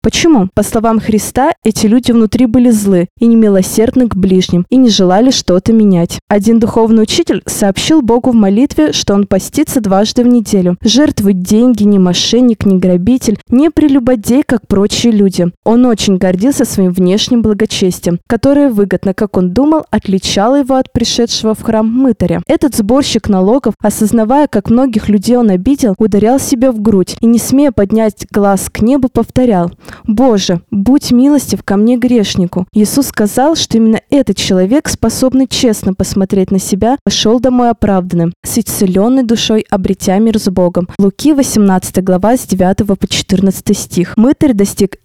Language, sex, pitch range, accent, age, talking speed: Russian, female, 195-250 Hz, native, 20-39, 160 wpm